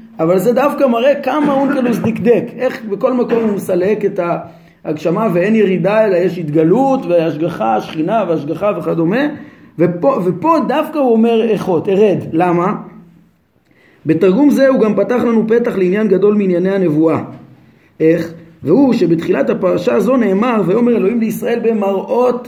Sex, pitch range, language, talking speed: male, 175-235 Hz, Hebrew, 140 wpm